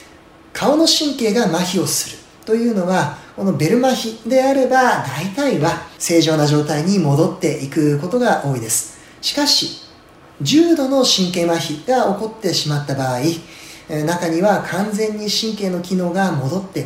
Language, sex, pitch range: Japanese, male, 150-220 Hz